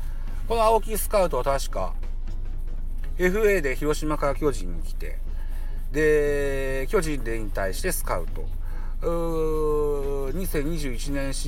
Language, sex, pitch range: Japanese, male, 95-160 Hz